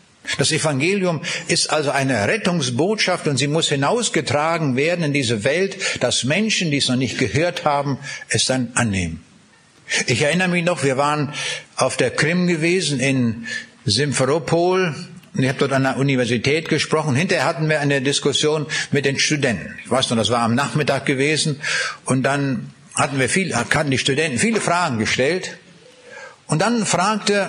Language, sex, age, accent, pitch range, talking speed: German, male, 60-79, German, 140-175 Hz, 165 wpm